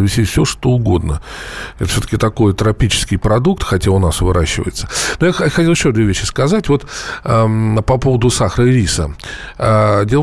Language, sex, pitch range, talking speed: Russian, male, 105-150 Hz, 170 wpm